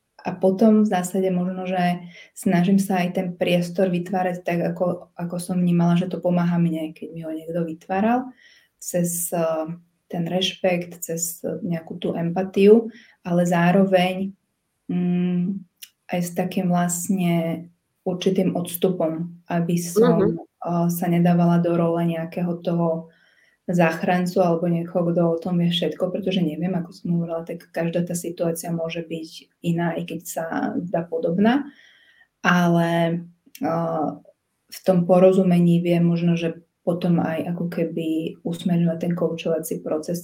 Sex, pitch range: female, 170-185 Hz